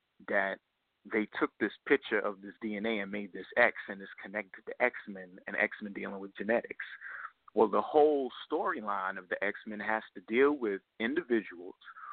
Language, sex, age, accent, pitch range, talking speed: English, male, 30-49, American, 105-130 Hz, 170 wpm